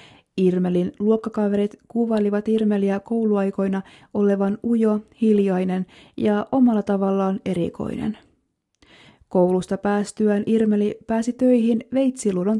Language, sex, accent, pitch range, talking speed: Finnish, female, native, 185-225 Hz, 85 wpm